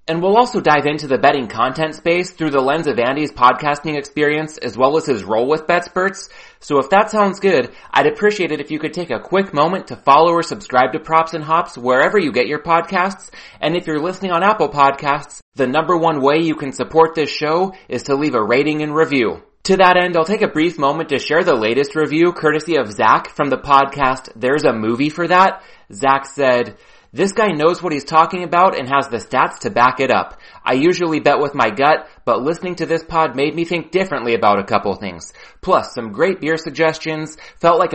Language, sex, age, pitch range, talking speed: English, male, 30-49, 140-175 Hz, 225 wpm